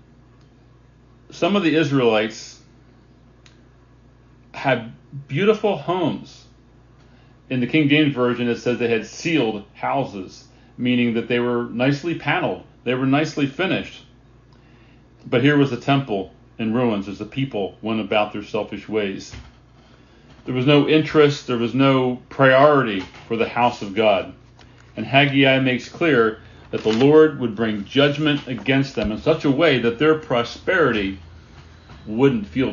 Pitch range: 110-135 Hz